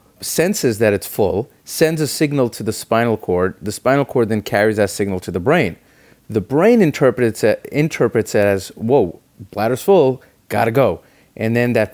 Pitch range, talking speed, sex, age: 105-140 Hz, 175 wpm, male, 30-49